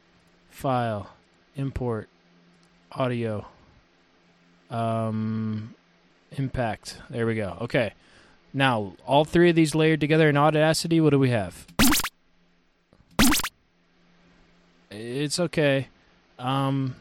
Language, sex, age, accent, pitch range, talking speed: English, male, 20-39, American, 85-140 Hz, 90 wpm